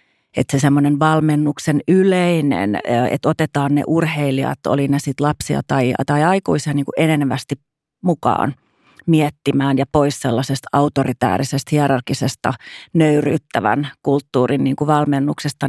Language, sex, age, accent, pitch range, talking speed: Finnish, female, 30-49, native, 135-155 Hz, 105 wpm